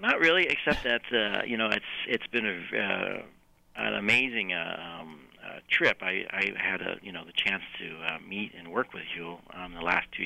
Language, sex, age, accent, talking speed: English, male, 50-69, American, 220 wpm